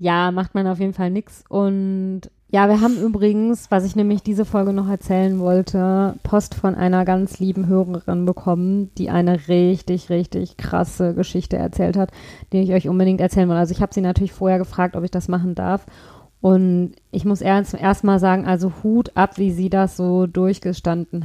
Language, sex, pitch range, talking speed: German, female, 180-200 Hz, 190 wpm